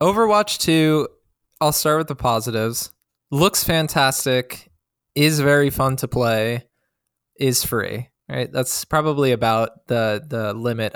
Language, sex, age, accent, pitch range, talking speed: English, male, 20-39, American, 115-150 Hz, 125 wpm